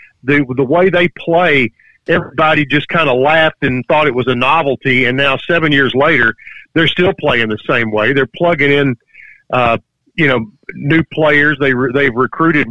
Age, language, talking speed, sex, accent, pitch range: 50-69, English, 185 wpm, male, American, 130-150 Hz